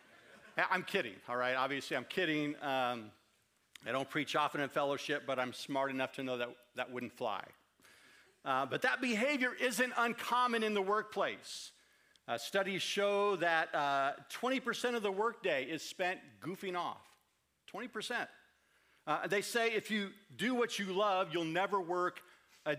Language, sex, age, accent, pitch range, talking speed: English, male, 50-69, American, 145-195 Hz, 155 wpm